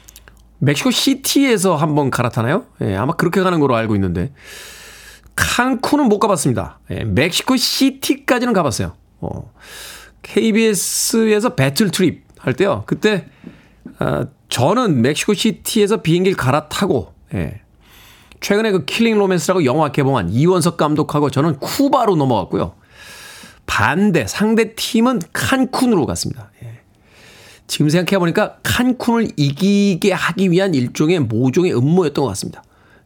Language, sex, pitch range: Korean, male, 135-215 Hz